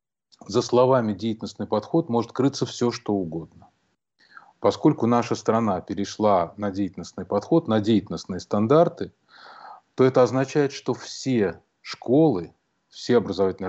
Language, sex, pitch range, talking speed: Russian, male, 100-120 Hz, 120 wpm